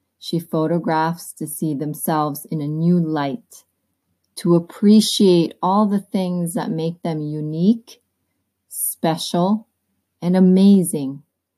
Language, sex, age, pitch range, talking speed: English, female, 20-39, 145-180 Hz, 110 wpm